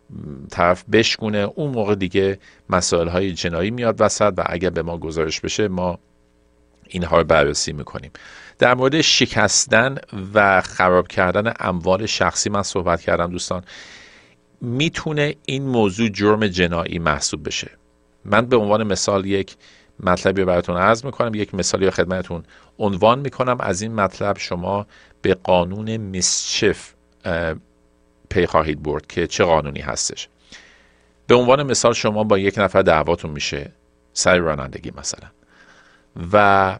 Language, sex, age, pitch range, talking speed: Persian, male, 50-69, 70-105 Hz, 130 wpm